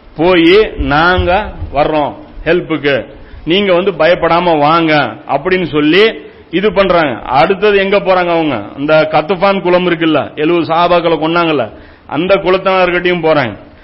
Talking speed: 115 wpm